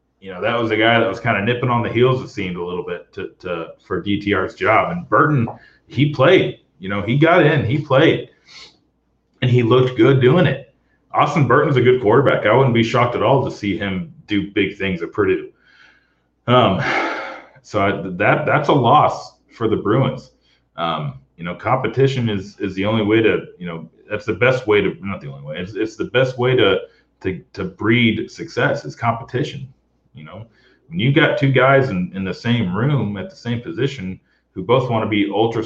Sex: male